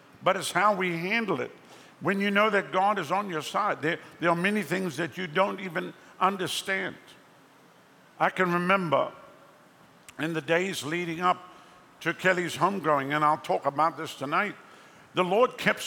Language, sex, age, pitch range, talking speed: English, male, 60-79, 160-195 Hz, 170 wpm